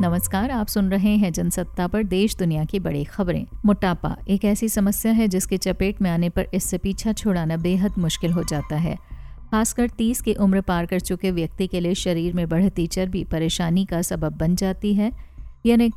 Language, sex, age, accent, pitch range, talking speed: Hindi, female, 50-69, native, 175-215 Hz, 190 wpm